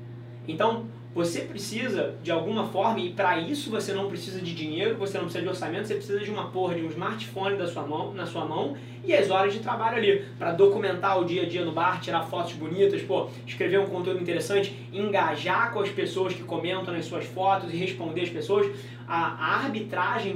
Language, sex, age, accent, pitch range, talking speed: Portuguese, male, 20-39, Brazilian, 135-190 Hz, 205 wpm